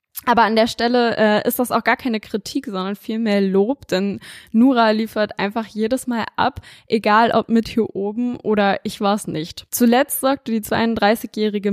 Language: German